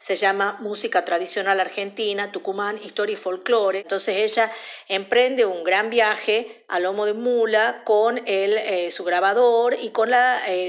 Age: 50-69